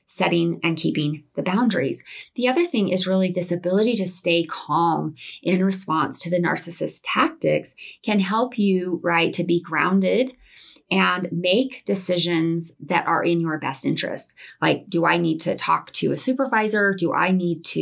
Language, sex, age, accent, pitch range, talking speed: English, female, 30-49, American, 160-195 Hz, 170 wpm